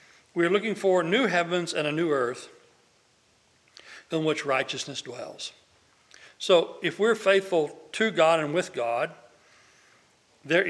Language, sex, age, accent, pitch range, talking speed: English, male, 60-79, American, 145-180 Hz, 135 wpm